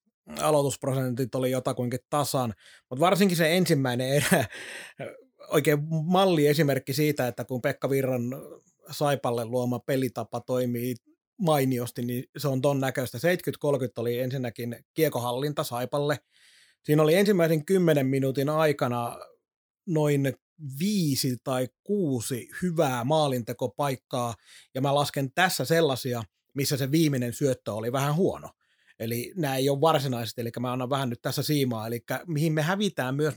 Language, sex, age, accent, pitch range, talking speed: Finnish, male, 30-49, native, 130-165 Hz, 130 wpm